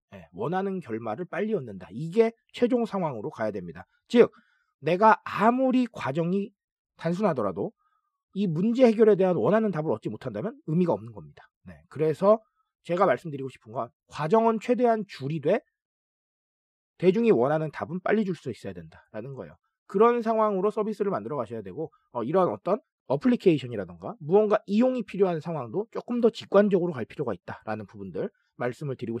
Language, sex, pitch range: Korean, male, 155-225 Hz